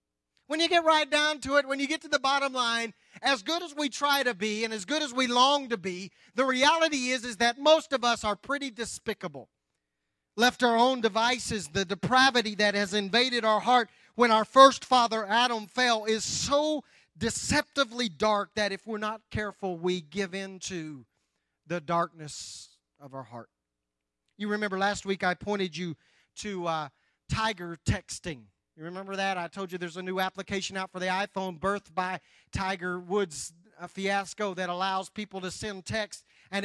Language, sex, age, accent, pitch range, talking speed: English, male, 40-59, American, 180-230 Hz, 185 wpm